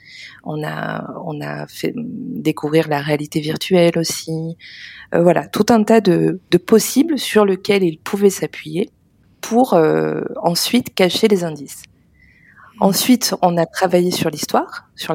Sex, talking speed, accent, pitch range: female, 145 wpm, French, 150-180 Hz